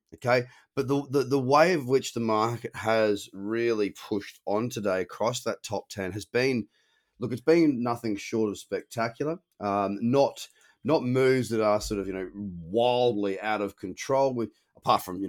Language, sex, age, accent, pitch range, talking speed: English, male, 30-49, Australian, 100-125 Hz, 180 wpm